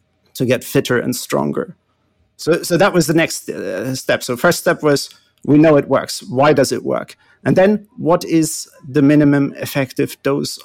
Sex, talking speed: male, 185 wpm